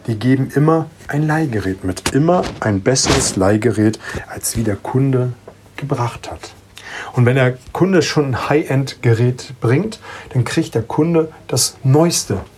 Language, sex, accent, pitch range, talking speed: German, male, German, 110-145 Hz, 145 wpm